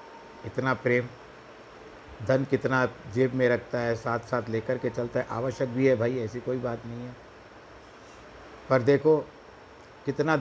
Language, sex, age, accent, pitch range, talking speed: Hindi, male, 60-79, native, 115-135 Hz, 150 wpm